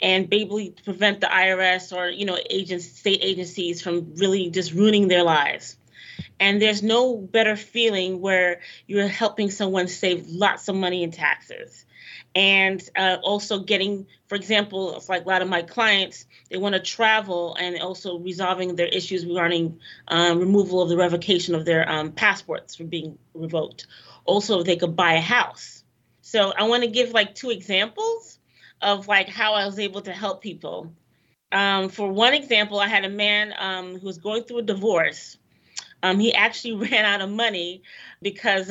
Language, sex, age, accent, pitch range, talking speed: English, female, 30-49, American, 180-210 Hz, 175 wpm